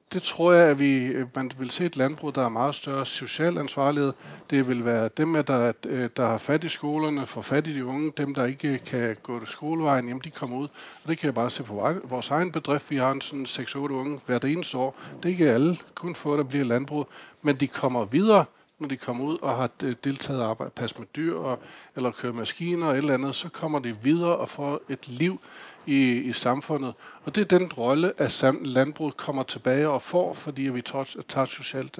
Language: Danish